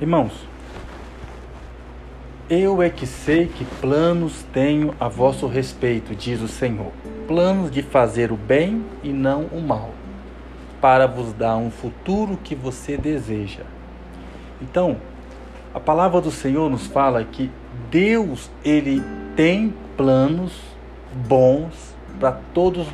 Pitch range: 110-170 Hz